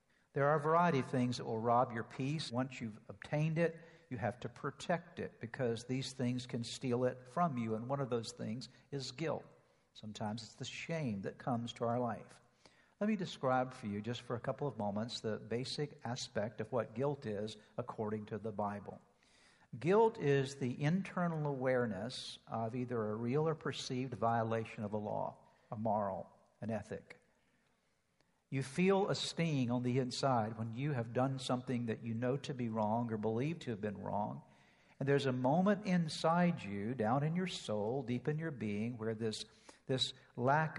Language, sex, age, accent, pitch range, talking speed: English, male, 60-79, American, 120-155 Hz, 185 wpm